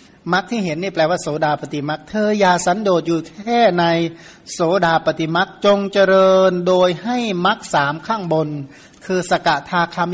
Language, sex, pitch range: Thai, male, 155-185 Hz